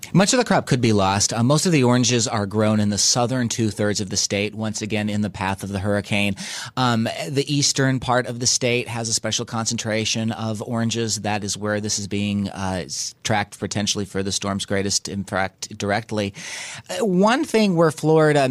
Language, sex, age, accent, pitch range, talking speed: English, male, 30-49, American, 105-125 Hz, 200 wpm